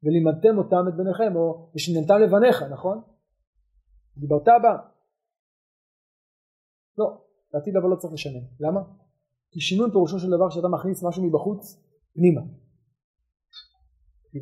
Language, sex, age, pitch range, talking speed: Hebrew, male, 30-49, 145-185 Hz, 115 wpm